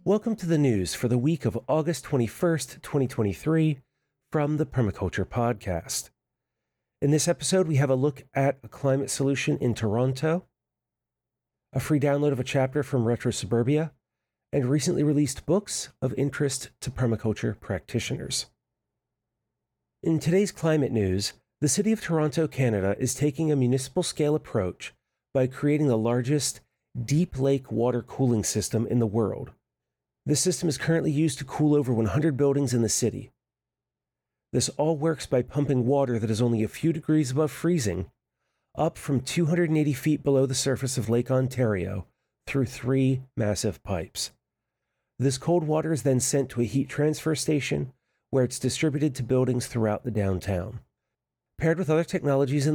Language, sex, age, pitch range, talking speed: English, male, 40-59, 120-150 Hz, 155 wpm